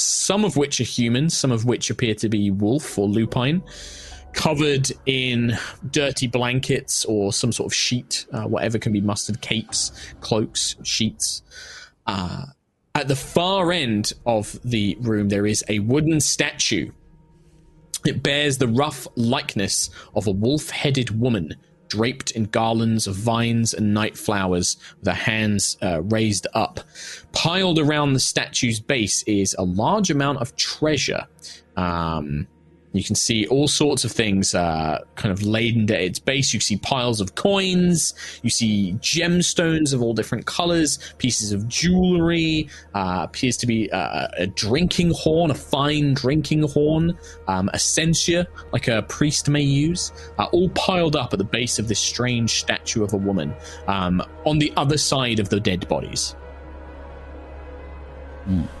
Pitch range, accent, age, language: 100-145 Hz, British, 20-39, English